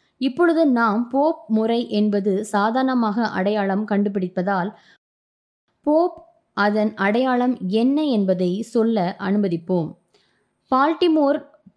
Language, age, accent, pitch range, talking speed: Tamil, 20-39, native, 200-275 Hz, 75 wpm